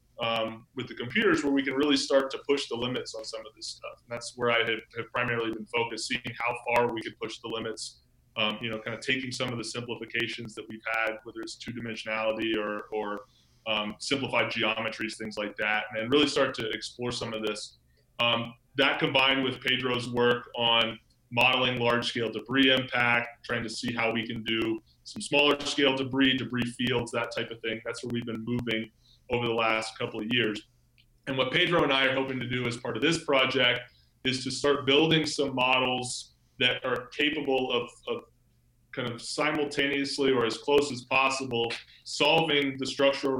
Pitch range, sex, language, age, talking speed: 115-130 Hz, male, English, 20-39, 195 wpm